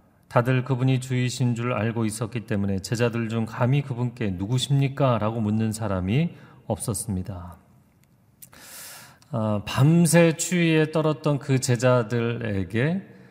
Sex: male